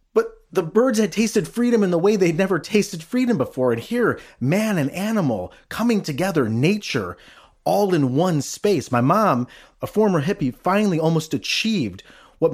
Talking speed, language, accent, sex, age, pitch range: 165 wpm, English, American, male, 30-49, 110-170 Hz